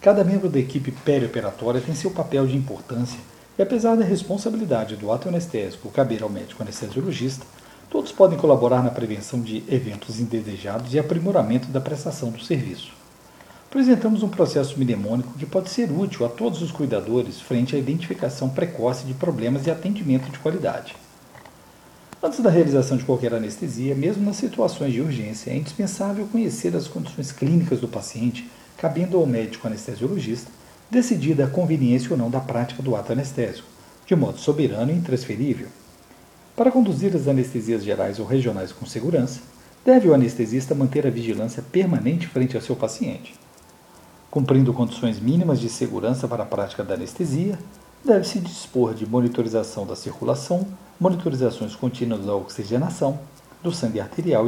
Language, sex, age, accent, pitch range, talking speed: Portuguese, male, 50-69, Brazilian, 120-170 Hz, 150 wpm